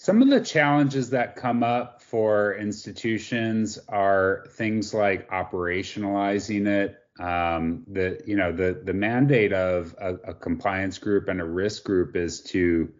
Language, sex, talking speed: English, male, 150 wpm